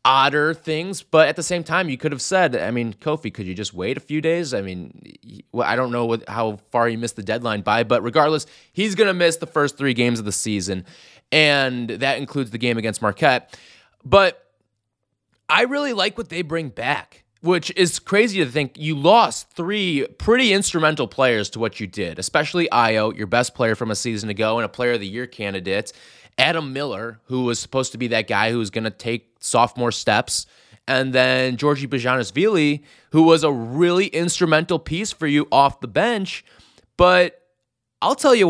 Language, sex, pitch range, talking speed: English, male, 120-175 Hz, 200 wpm